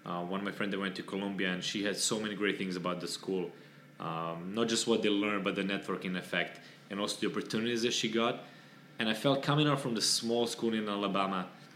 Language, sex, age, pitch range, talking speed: English, male, 20-39, 95-110 Hz, 240 wpm